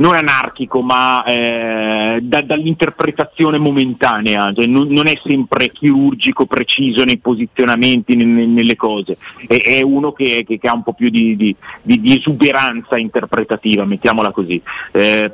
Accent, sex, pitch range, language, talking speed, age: native, male, 110-145 Hz, Italian, 155 wpm, 30-49